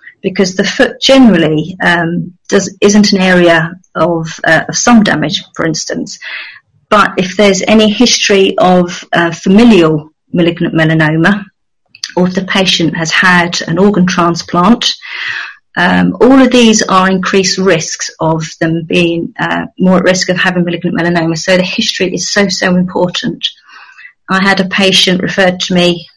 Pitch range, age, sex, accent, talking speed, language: 175-205 Hz, 40-59, female, British, 155 wpm, English